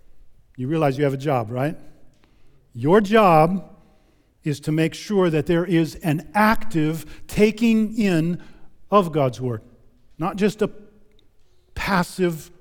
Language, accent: English, American